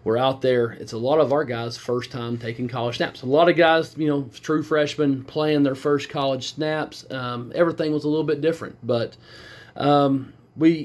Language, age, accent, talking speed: English, 40-59, American, 205 wpm